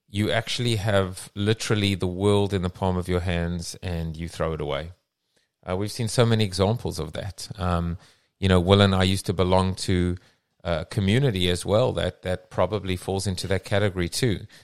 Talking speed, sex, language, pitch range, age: 195 wpm, male, English, 90-115 Hz, 30-49